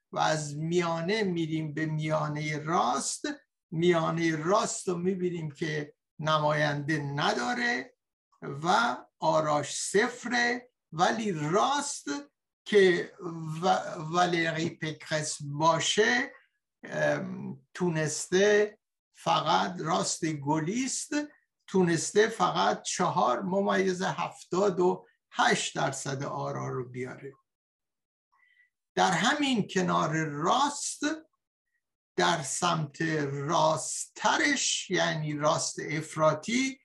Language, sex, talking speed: Persian, male, 80 wpm